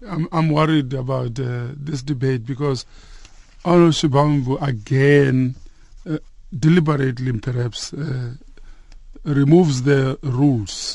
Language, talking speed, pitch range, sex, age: English, 80 wpm, 130-150 Hz, male, 50-69